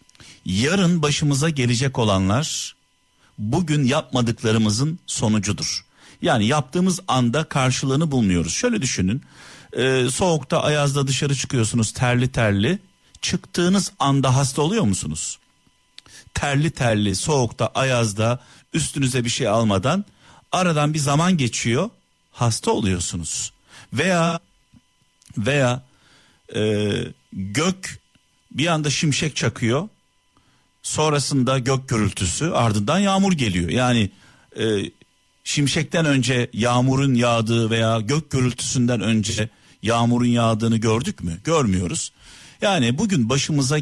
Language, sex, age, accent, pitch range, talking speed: Turkish, male, 50-69, native, 110-150 Hz, 100 wpm